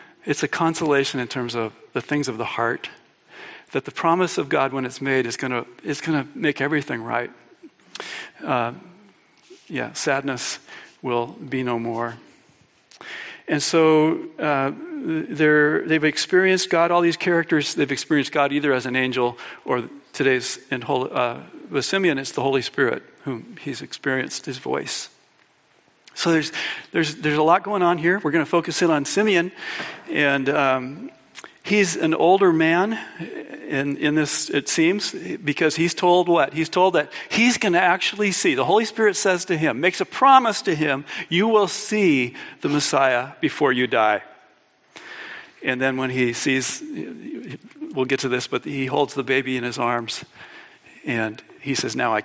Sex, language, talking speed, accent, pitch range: male, English, 165 wpm, American, 135-180 Hz